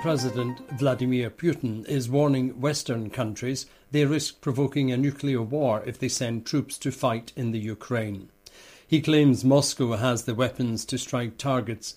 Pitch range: 110-135 Hz